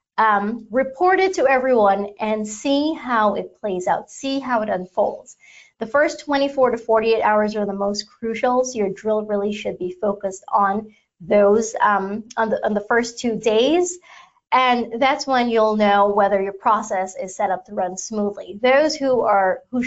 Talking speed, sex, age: 175 wpm, female, 30-49